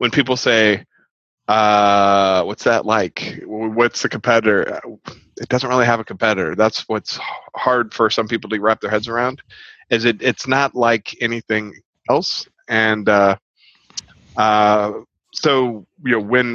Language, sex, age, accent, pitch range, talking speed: English, male, 30-49, American, 105-120 Hz, 150 wpm